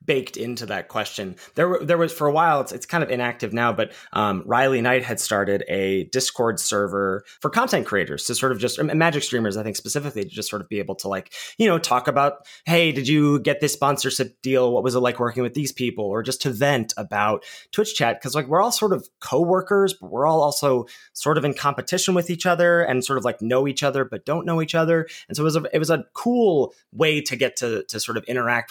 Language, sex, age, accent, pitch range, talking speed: English, male, 20-39, American, 120-155 Hz, 250 wpm